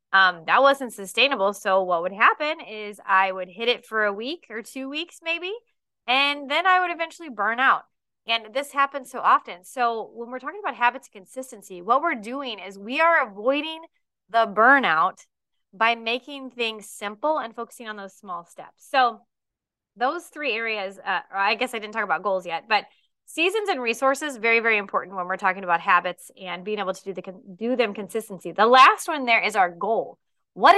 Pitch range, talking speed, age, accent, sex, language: 205-285 Hz, 195 wpm, 20-39, American, female, English